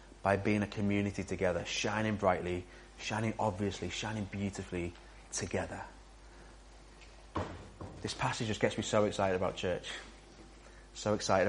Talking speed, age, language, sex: 120 wpm, 30-49, English, male